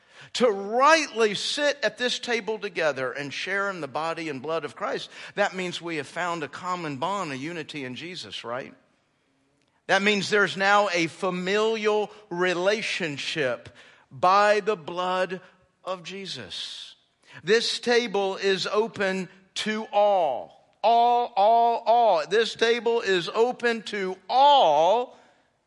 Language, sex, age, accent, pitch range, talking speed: English, male, 50-69, American, 165-225 Hz, 130 wpm